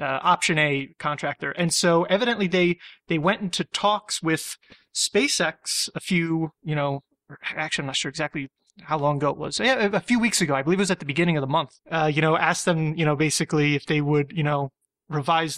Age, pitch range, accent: 20-39, 145-180 Hz, American